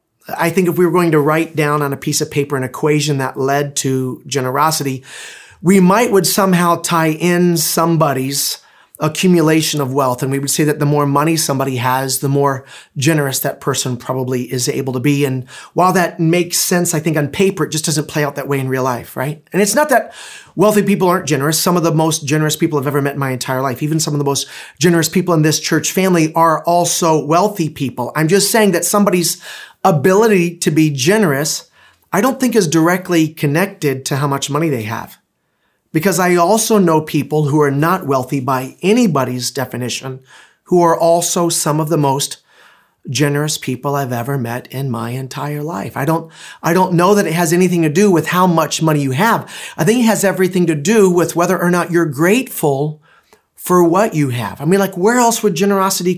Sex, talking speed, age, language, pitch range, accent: male, 210 wpm, 30-49, English, 140-180 Hz, American